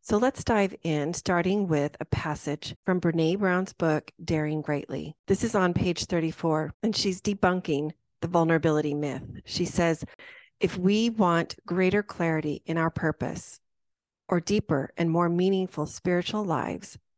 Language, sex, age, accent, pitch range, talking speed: English, female, 40-59, American, 155-190 Hz, 145 wpm